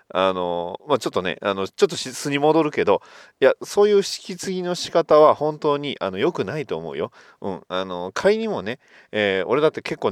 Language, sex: Japanese, male